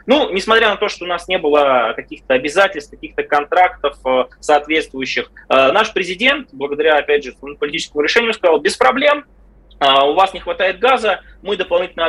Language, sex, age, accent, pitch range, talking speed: Russian, male, 20-39, native, 145-220 Hz, 155 wpm